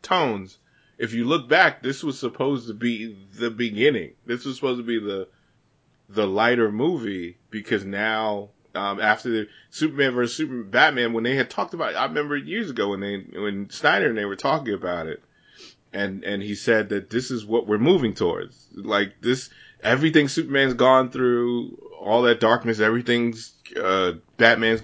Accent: American